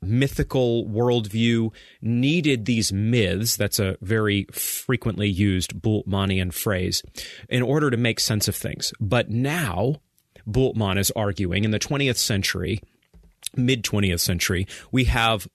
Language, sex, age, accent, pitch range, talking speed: English, male, 30-49, American, 105-125 Hz, 125 wpm